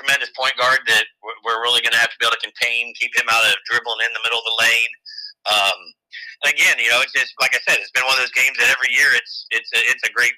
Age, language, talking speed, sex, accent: 40-59, English, 285 wpm, male, American